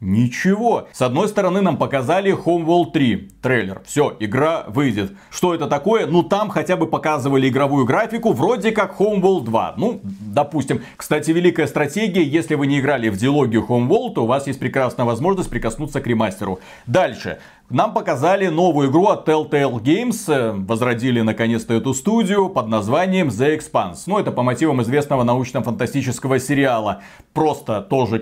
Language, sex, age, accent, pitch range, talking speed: Russian, male, 40-59, native, 135-195 Hz, 155 wpm